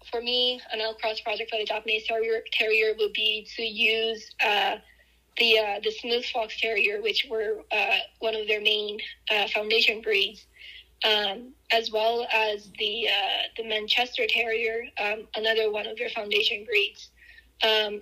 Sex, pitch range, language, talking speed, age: female, 215-245 Hz, English, 165 wpm, 10-29